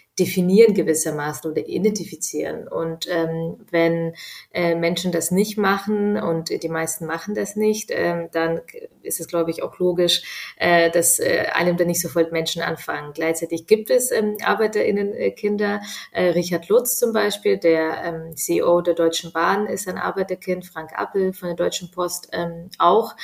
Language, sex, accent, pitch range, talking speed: German, female, German, 165-185 Hz, 160 wpm